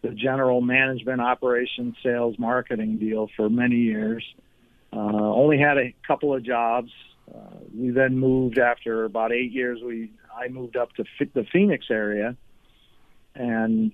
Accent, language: American, English